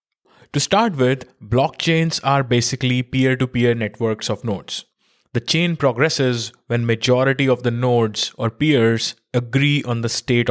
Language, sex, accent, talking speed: English, male, Indian, 135 wpm